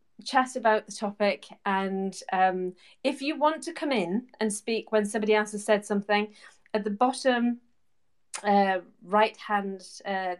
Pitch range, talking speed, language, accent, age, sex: 190-240 Hz, 155 wpm, English, British, 30-49, female